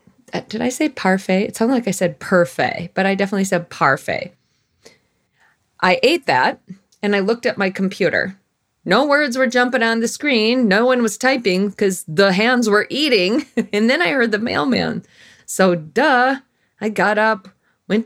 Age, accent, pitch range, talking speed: 30-49, American, 185-240 Hz, 175 wpm